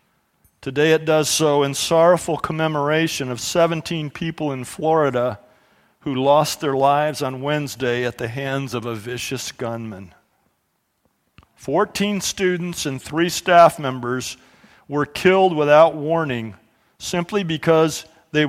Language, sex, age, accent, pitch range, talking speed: English, male, 50-69, American, 135-165 Hz, 125 wpm